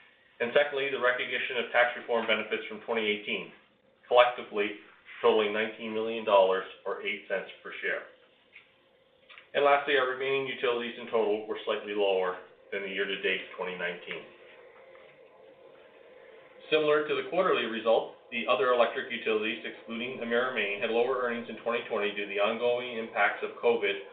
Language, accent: English, American